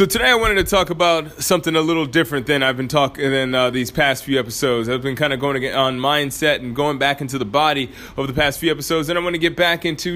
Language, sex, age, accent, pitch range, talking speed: English, male, 20-39, American, 120-155 Hz, 265 wpm